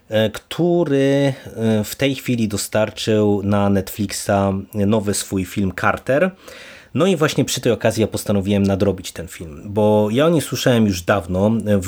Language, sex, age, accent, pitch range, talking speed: Polish, male, 30-49, native, 100-115 Hz, 150 wpm